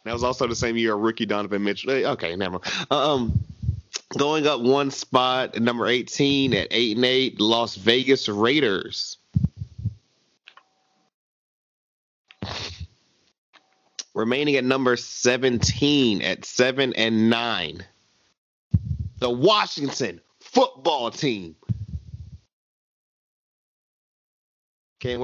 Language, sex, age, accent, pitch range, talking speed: English, male, 30-49, American, 115-140 Hz, 95 wpm